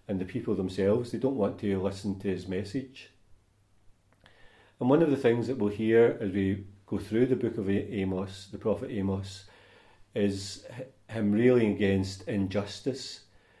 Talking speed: 160 wpm